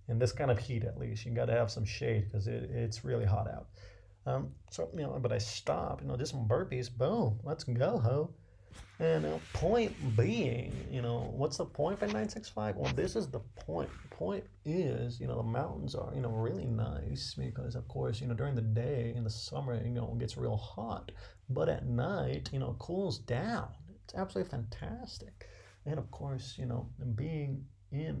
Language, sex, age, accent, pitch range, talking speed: English, male, 30-49, American, 105-130 Hz, 205 wpm